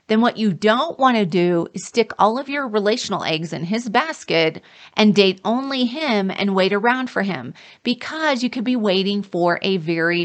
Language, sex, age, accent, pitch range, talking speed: English, female, 30-49, American, 180-240 Hz, 200 wpm